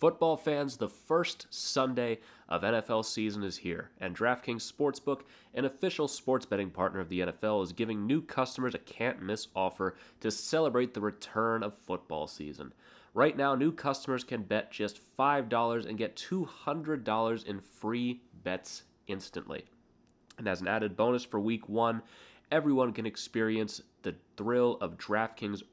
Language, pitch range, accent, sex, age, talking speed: English, 105-130 Hz, American, male, 30-49, 150 wpm